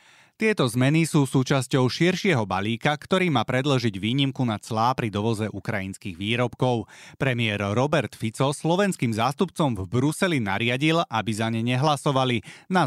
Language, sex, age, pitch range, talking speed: Slovak, male, 30-49, 110-150 Hz, 135 wpm